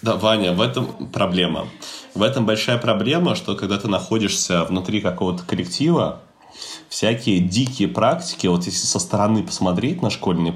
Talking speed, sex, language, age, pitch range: 150 wpm, male, Russian, 30-49, 100-135 Hz